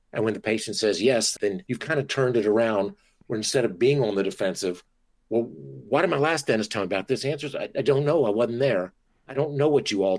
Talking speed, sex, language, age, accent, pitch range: 260 wpm, male, English, 50-69, American, 95-115 Hz